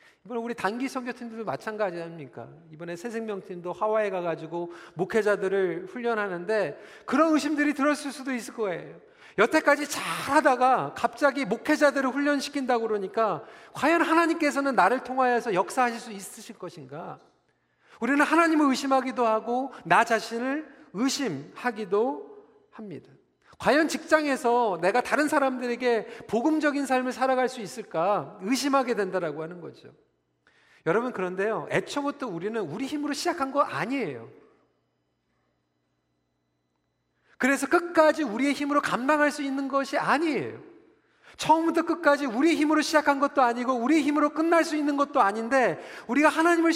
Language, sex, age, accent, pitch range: Korean, male, 40-59, native, 195-290 Hz